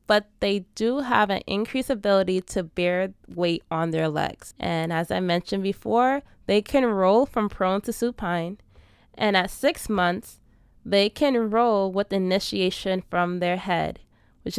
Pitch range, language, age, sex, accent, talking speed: 175-220 Hz, English, 20-39, female, American, 155 wpm